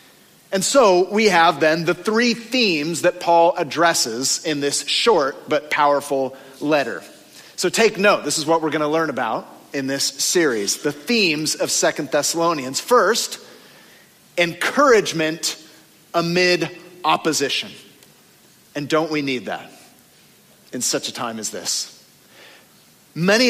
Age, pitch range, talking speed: 40-59, 150-210 Hz, 135 wpm